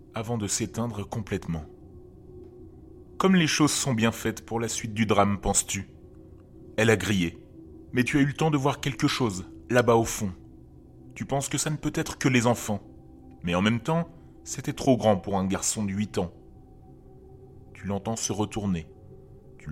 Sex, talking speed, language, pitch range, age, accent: male, 195 wpm, French, 95-130 Hz, 30-49, French